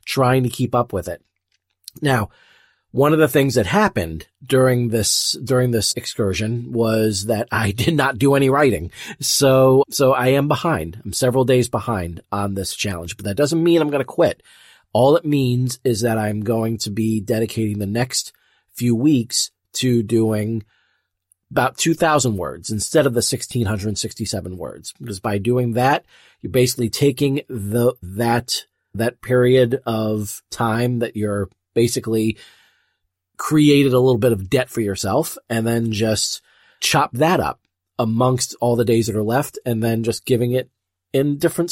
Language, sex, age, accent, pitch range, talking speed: English, male, 40-59, American, 105-130 Hz, 165 wpm